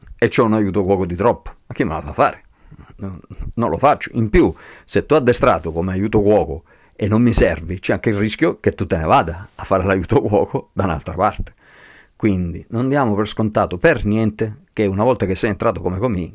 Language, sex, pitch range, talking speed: Italian, male, 85-115 Hz, 220 wpm